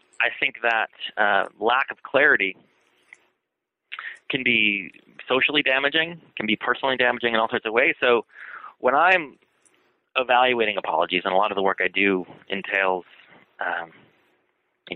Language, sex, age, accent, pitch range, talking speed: English, male, 30-49, American, 100-125 Hz, 145 wpm